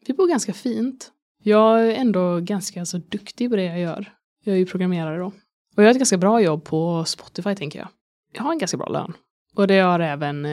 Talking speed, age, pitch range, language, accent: 220 wpm, 20-39, 155-190 Hz, Swedish, native